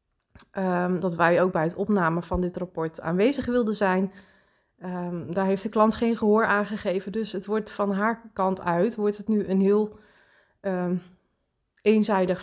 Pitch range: 175-200 Hz